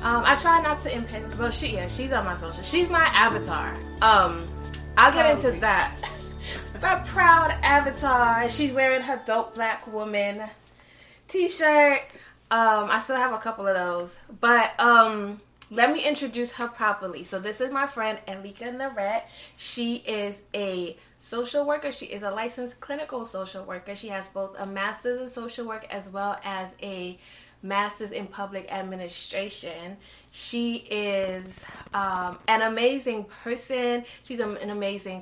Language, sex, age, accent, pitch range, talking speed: English, female, 20-39, American, 195-250 Hz, 155 wpm